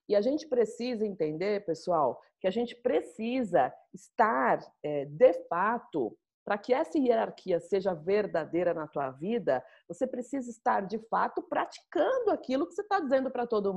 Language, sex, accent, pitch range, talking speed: Portuguese, female, Brazilian, 170-240 Hz, 155 wpm